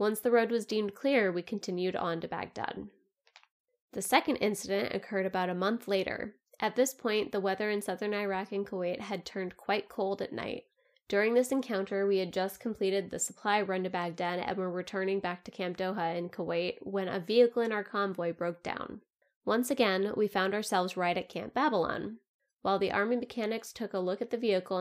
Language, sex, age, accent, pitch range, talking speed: English, female, 20-39, American, 185-225 Hz, 200 wpm